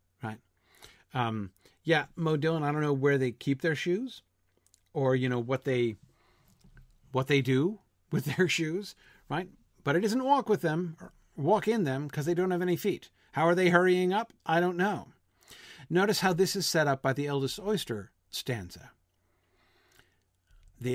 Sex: male